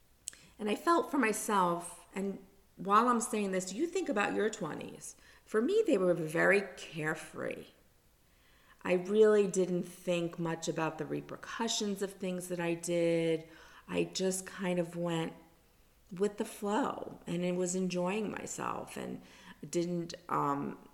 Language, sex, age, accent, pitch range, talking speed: English, female, 50-69, American, 165-195 Hz, 145 wpm